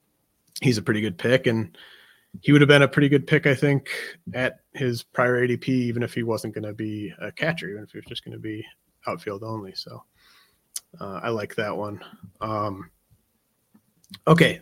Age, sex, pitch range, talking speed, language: 30-49, male, 110-145 Hz, 195 wpm, English